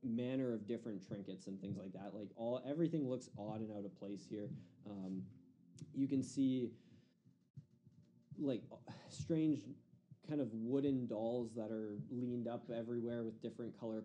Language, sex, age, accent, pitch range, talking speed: English, male, 20-39, American, 100-125 Hz, 160 wpm